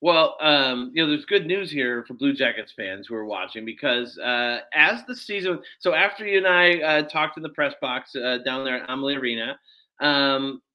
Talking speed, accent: 210 wpm, American